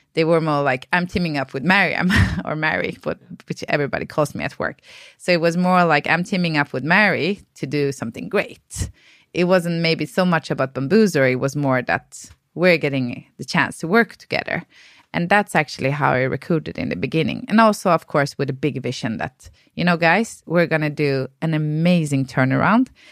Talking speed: 200 wpm